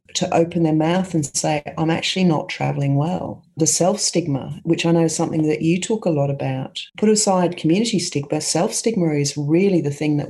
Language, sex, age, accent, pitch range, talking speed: English, female, 40-59, Australian, 140-175 Hz, 210 wpm